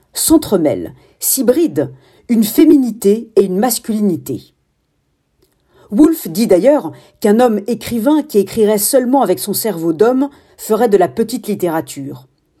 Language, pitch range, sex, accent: French, 185-255 Hz, female, French